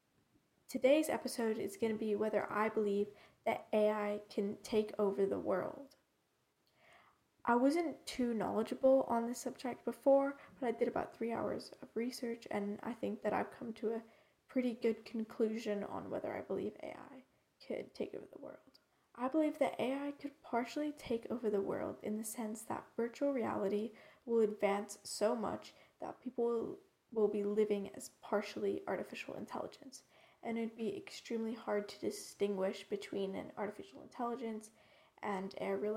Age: 10-29